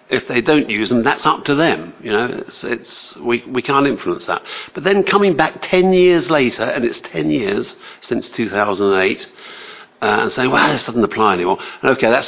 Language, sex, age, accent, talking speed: English, male, 60-79, British, 200 wpm